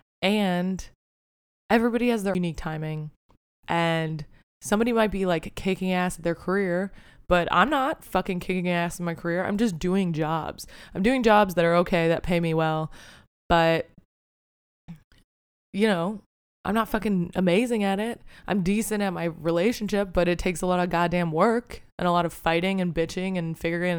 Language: English